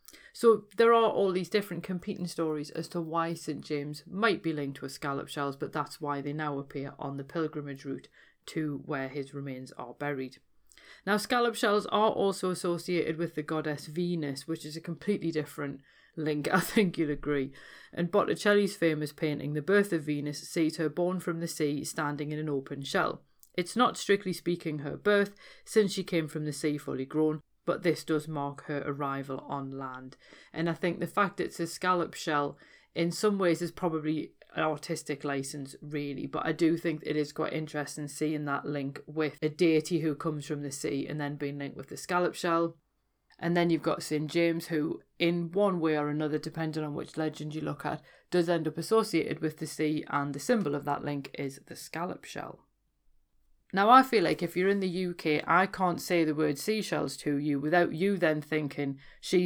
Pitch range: 145-175 Hz